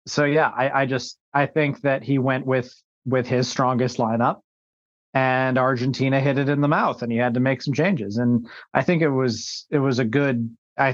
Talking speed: 215 wpm